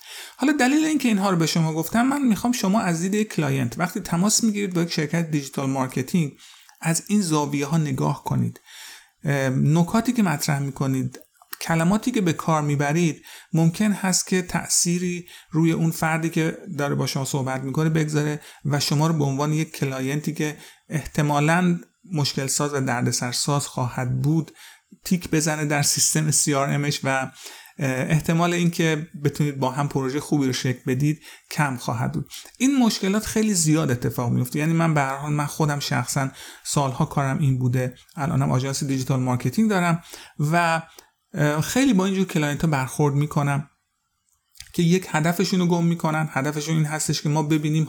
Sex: male